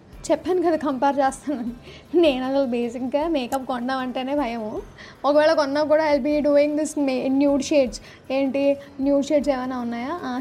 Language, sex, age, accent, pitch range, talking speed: Telugu, female, 20-39, native, 265-310 Hz, 135 wpm